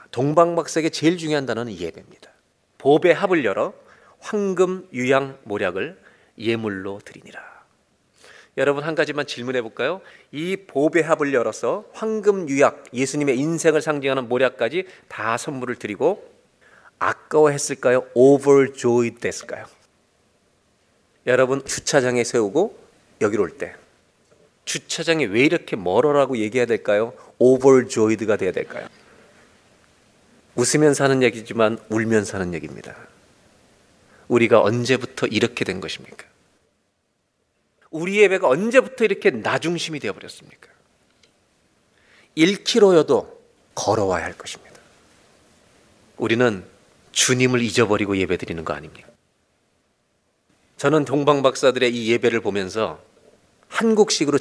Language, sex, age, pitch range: Korean, male, 30-49, 115-155 Hz